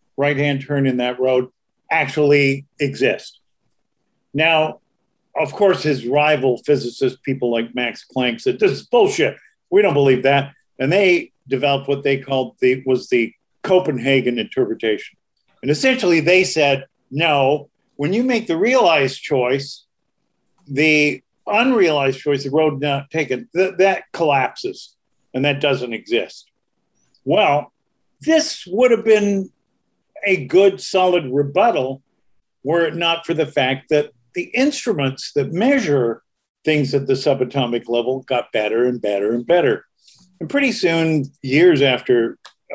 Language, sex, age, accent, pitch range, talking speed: English, male, 50-69, American, 130-190 Hz, 135 wpm